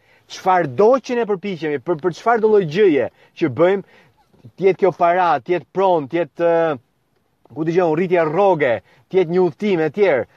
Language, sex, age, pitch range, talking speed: English, male, 30-49, 130-175 Hz, 155 wpm